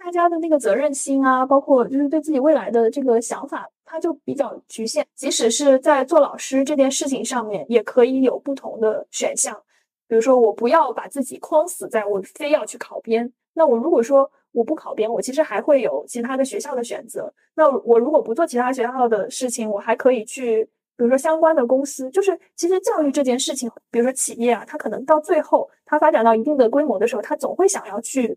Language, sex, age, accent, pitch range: Chinese, female, 20-39, native, 235-305 Hz